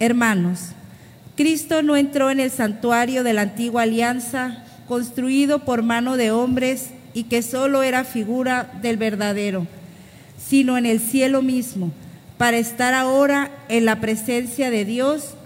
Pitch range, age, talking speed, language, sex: 220-265 Hz, 40-59, 140 wpm, Spanish, female